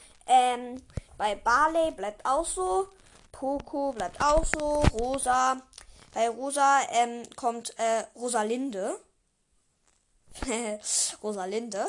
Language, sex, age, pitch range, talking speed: German, female, 20-39, 200-265 Hz, 90 wpm